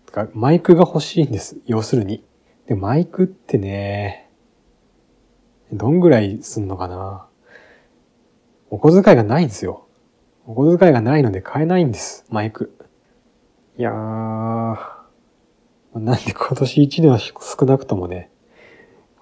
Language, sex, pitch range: Japanese, male, 105-140 Hz